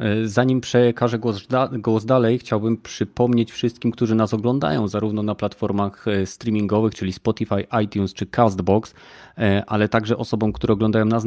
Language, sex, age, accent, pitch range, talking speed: Polish, male, 30-49, native, 105-120 Hz, 140 wpm